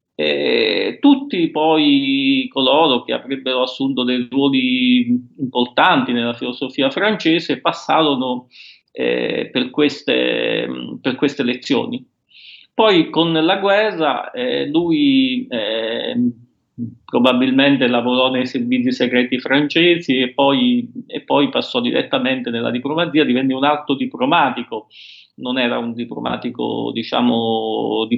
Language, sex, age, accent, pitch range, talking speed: Italian, male, 40-59, native, 125-195 Hz, 110 wpm